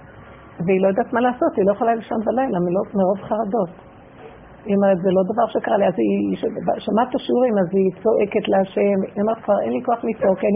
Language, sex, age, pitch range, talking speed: Hebrew, female, 50-69, 200-250 Hz, 210 wpm